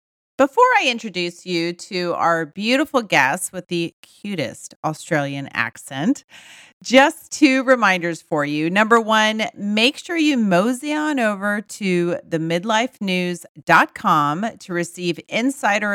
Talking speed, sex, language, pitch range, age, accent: 115 wpm, female, English, 165-245 Hz, 40-59, American